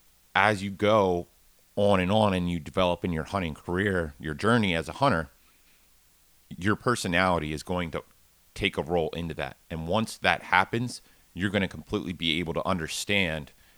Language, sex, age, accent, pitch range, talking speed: English, male, 30-49, American, 80-95 Hz, 175 wpm